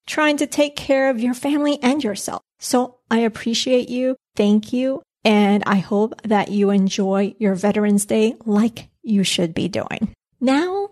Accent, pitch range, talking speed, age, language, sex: American, 205-255 Hz, 165 wpm, 30-49, English, female